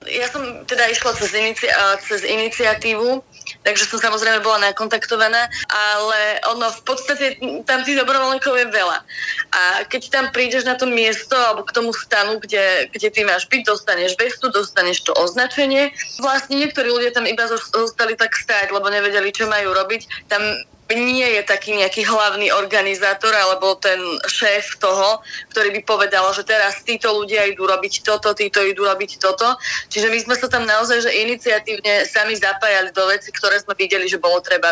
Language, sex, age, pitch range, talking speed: Slovak, female, 20-39, 205-245 Hz, 170 wpm